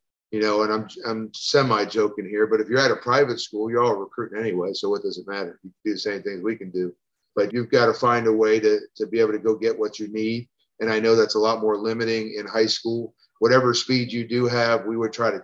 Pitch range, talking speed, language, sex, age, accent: 105-120 Hz, 270 wpm, English, male, 40-59, American